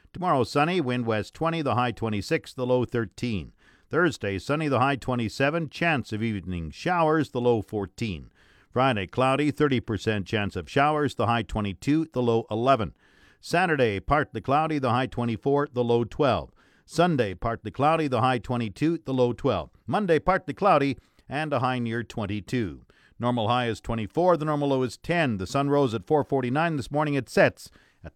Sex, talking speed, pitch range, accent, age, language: male, 170 wpm, 115-150 Hz, American, 50-69, English